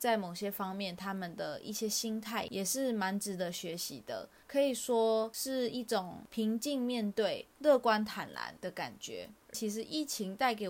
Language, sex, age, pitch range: Chinese, female, 20-39, 195-250 Hz